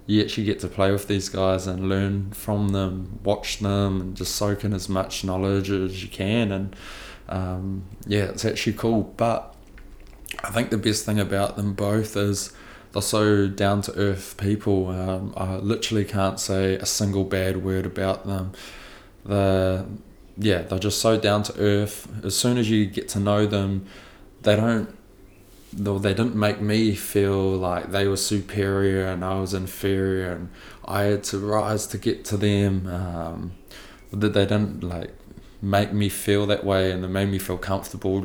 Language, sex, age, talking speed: English, male, 20-39, 180 wpm